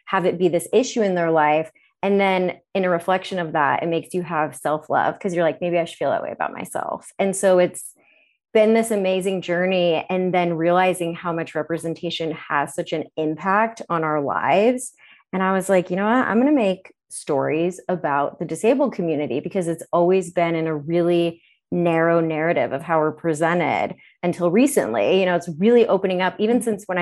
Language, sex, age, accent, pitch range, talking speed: English, female, 30-49, American, 165-190 Hz, 200 wpm